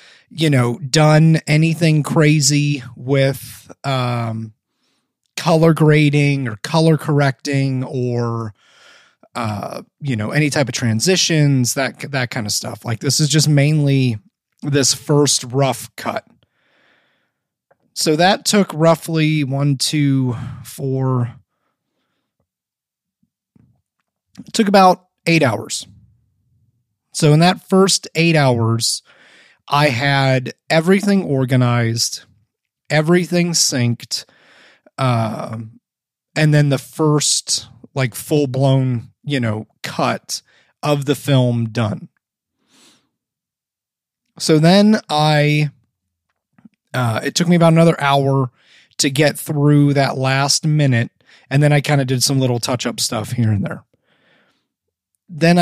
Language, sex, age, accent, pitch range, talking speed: English, male, 30-49, American, 120-155 Hz, 110 wpm